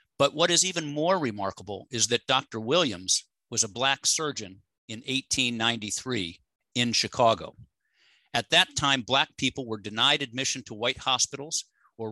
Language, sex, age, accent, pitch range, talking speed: English, male, 50-69, American, 110-140 Hz, 150 wpm